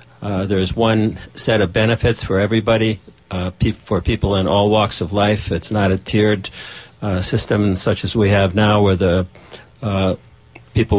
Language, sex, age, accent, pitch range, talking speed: English, male, 60-79, American, 95-110 Hz, 170 wpm